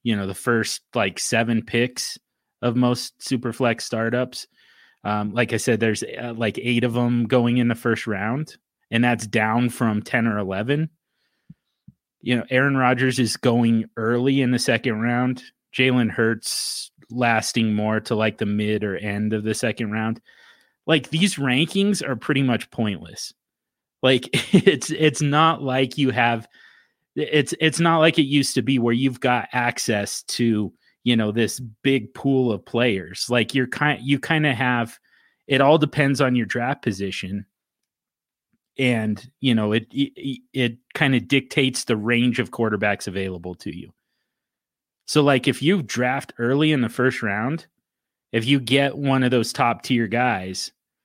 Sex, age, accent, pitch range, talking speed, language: male, 30-49, American, 115-135 Hz, 165 wpm, English